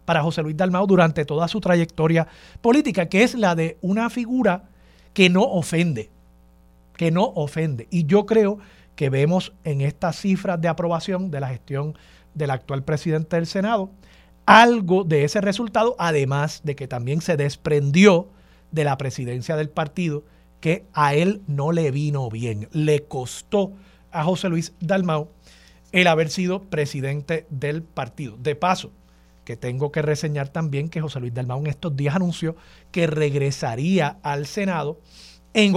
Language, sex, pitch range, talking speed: Spanish, male, 145-185 Hz, 160 wpm